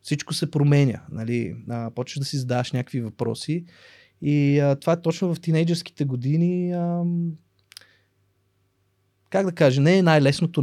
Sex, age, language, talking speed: male, 20-39, Bulgarian, 135 wpm